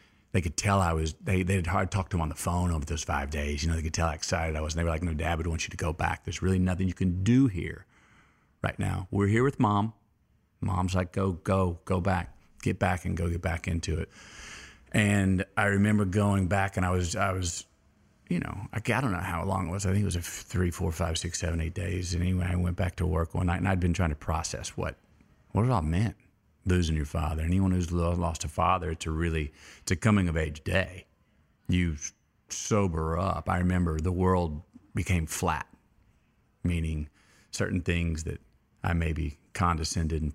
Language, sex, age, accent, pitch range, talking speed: English, male, 40-59, American, 80-95 Hz, 220 wpm